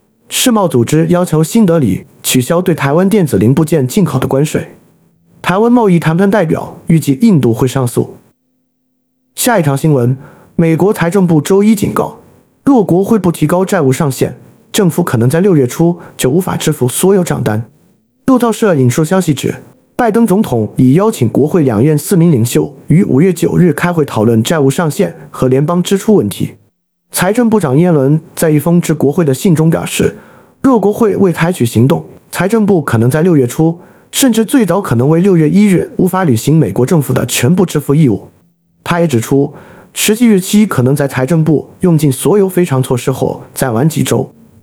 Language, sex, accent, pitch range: Chinese, male, native, 135-195 Hz